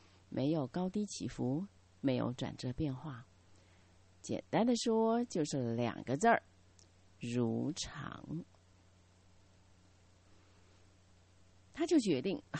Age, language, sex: 30-49, Chinese, female